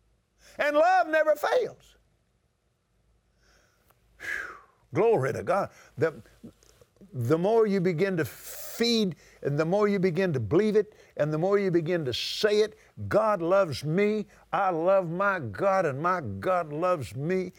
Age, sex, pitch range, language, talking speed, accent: 50-69, male, 165-195 Hz, English, 145 wpm, American